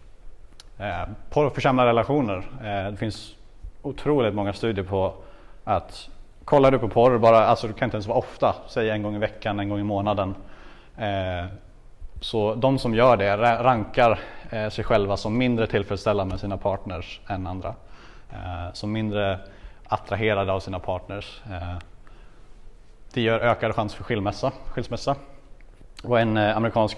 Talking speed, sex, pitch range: 140 wpm, male, 100-115 Hz